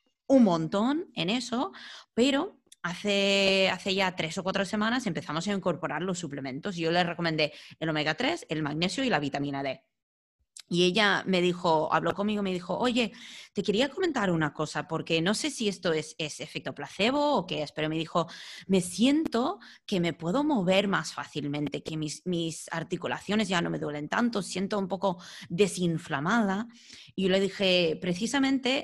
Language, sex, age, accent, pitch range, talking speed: English, female, 20-39, Spanish, 160-205 Hz, 175 wpm